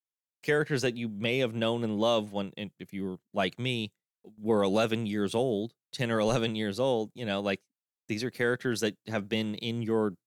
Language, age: English, 30-49